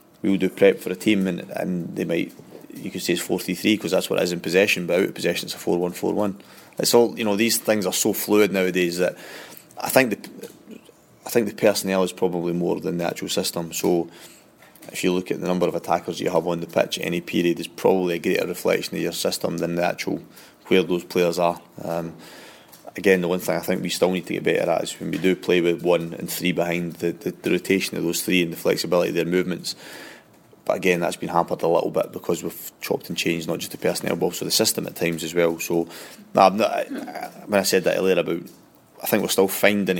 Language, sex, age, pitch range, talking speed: English, male, 20-39, 85-95 Hz, 250 wpm